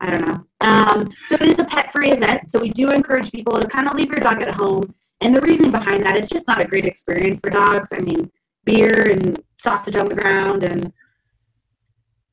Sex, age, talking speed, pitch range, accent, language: female, 30-49, 230 wpm, 195-250 Hz, American, English